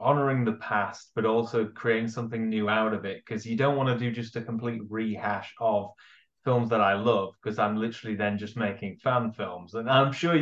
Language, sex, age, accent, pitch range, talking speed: English, male, 20-39, British, 110-130 Hz, 215 wpm